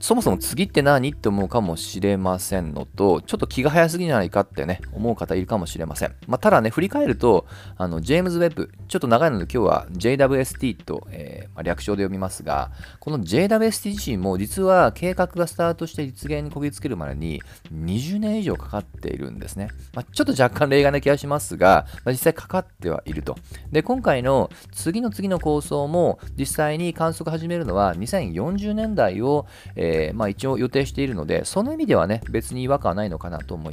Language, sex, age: Japanese, male, 40-59